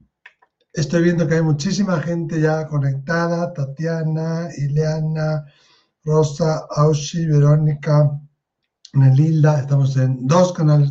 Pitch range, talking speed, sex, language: 140-175 Hz, 100 wpm, male, Spanish